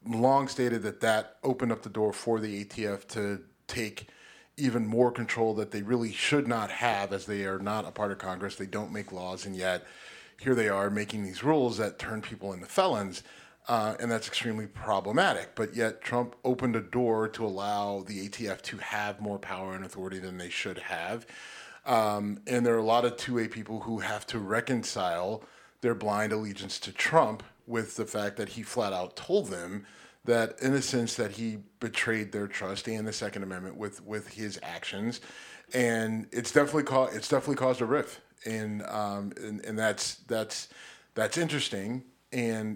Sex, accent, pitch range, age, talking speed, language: male, American, 100-115 Hz, 40-59, 190 wpm, English